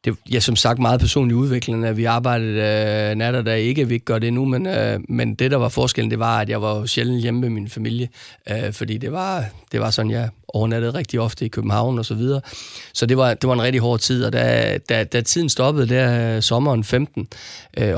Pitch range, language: 110-130 Hz, Danish